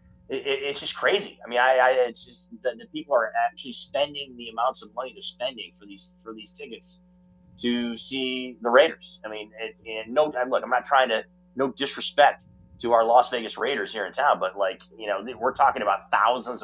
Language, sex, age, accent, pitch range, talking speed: English, male, 30-49, American, 110-170 Hz, 210 wpm